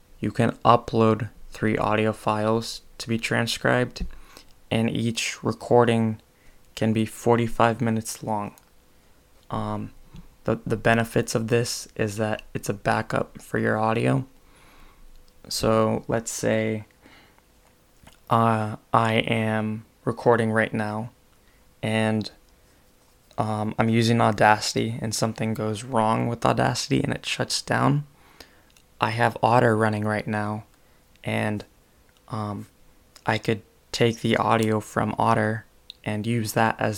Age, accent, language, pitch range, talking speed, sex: 20-39, American, English, 105-115 Hz, 120 wpm, male